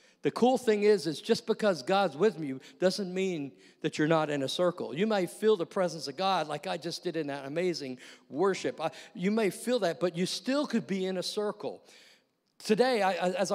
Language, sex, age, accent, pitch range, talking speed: English, male, 50-69, American, 140-190 Hz, 210 wpm